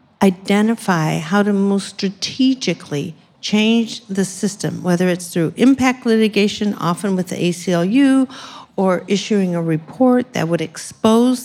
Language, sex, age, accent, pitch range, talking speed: English, female, 50-69, American, 175-220 Hz, 125 wpm